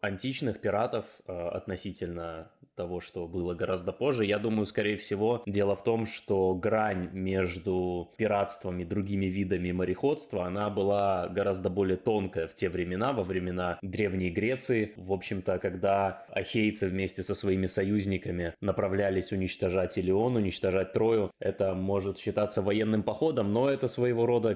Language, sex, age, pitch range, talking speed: Russian, male, 20-39, 95-105 Hz, 140 wpm